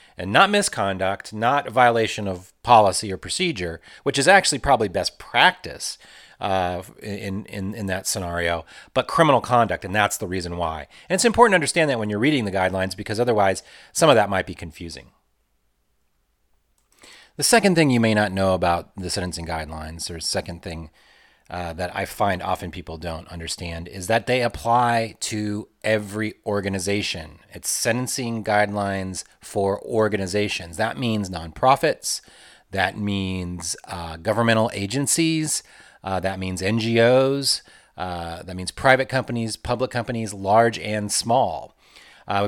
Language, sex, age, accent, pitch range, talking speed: English, male, 30-49, American, 90-115 Hz, 150 wpm